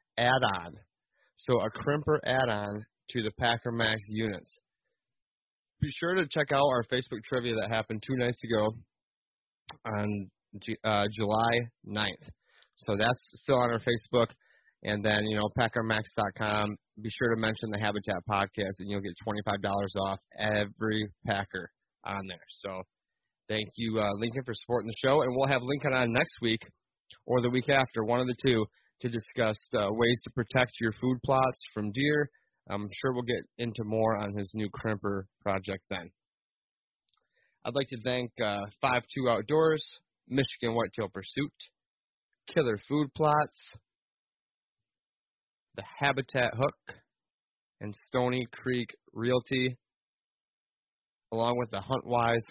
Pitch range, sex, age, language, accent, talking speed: 105-125 Hz, male, 30-49, English, American, 145 wpm